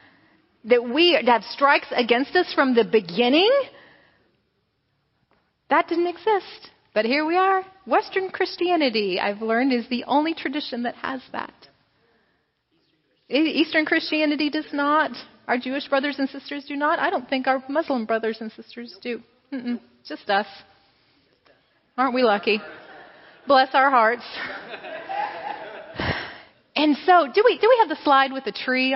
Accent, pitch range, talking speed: American, 235-315 Hz, 140 wpm